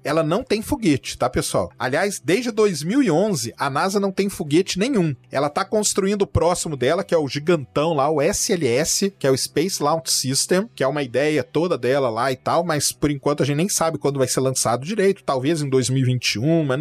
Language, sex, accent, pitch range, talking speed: Portuguese, male, Brazilian, 145-200 Hz, 210 wpm